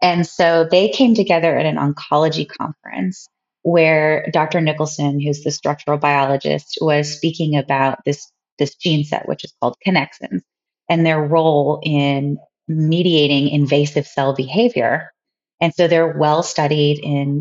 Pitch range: 150-170 Hz